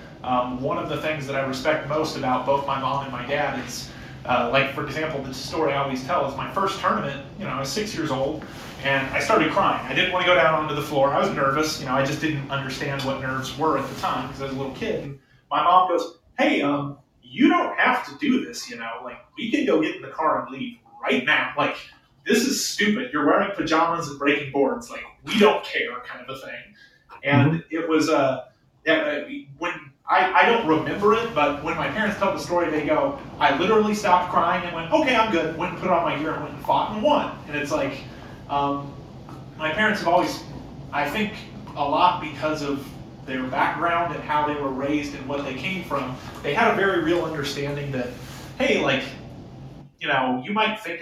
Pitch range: 135-170 Hz